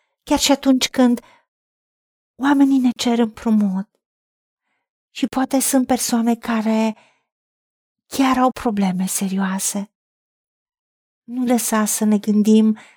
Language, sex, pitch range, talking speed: Romanian, female, 210-265 Hz, 100 wpm